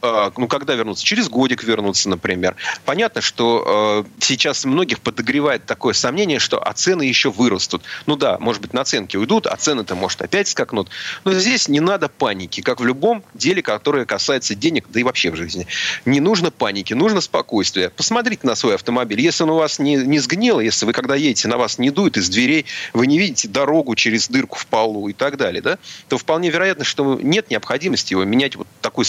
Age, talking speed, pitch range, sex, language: 30-49, 200 wpm, 105-155 Hz, male, Russian